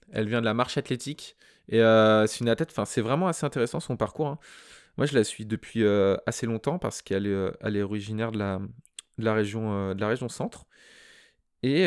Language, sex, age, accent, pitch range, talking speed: French, male, 20-39, French, 100-120 Hz, 220 wpm